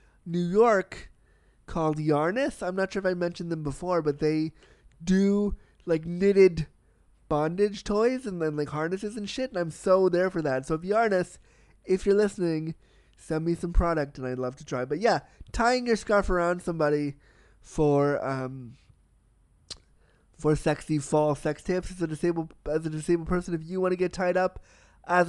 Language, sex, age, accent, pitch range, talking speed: English, male, 20-39, American, 150-185 Hz, 180 wpm